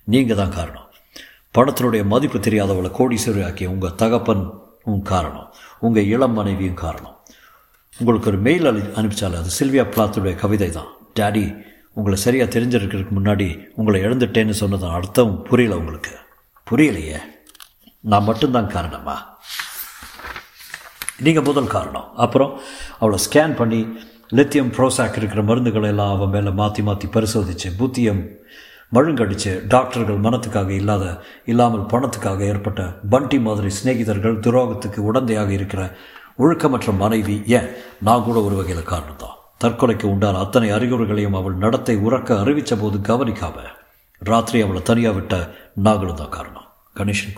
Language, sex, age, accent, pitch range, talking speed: Tamil, male, 50-69, native, 100-120 Hz, 120 wpm